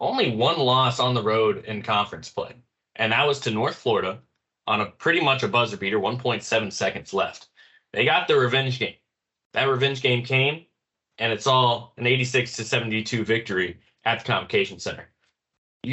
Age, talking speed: 20-39, 175 wpm